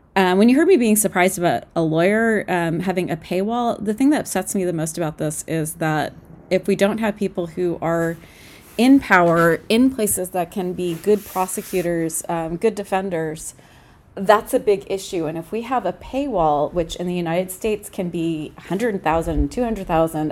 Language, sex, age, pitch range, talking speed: English, female, 30-49, 165-210 Hz, 185 wpm